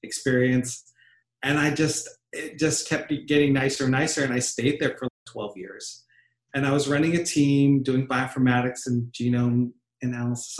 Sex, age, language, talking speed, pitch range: male, 40-59, English, 165 wpm, 120-140 Hz